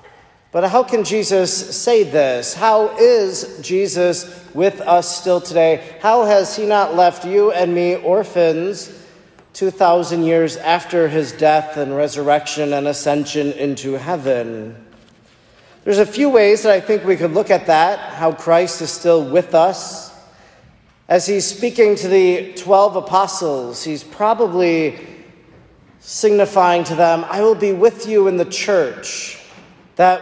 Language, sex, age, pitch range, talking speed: English, male, 40-59, 160-205 Hz, 145 wpm